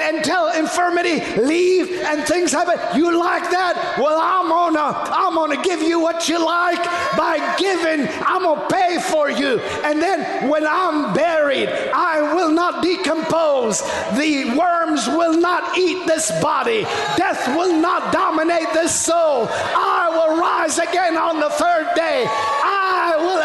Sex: male